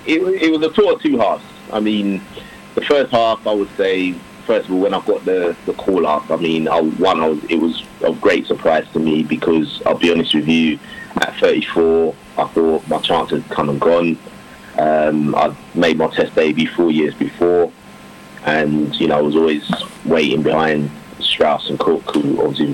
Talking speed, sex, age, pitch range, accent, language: 200 wpm, male, 30-49, 80-100 Hz, British, English